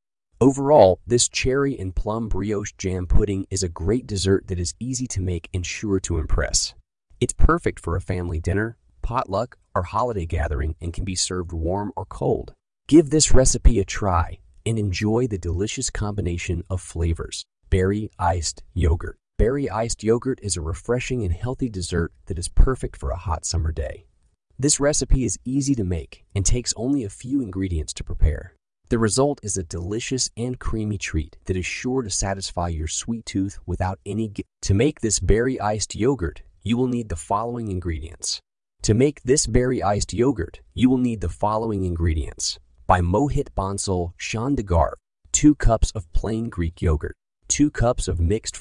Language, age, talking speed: English, 30-49, 170 wpm